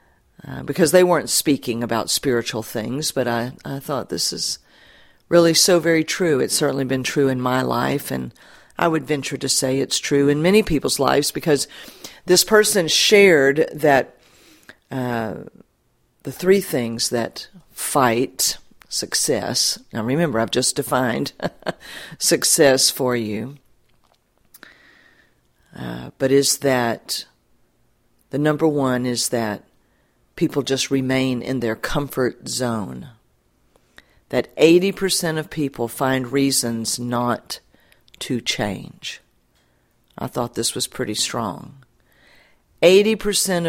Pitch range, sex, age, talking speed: 120-155 Hz, female, 50-69, 120 wpm